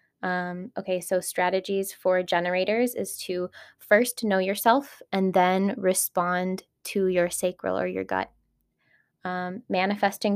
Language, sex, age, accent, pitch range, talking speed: English, female, 20-39, American, 185-210 Hz, 125 wpm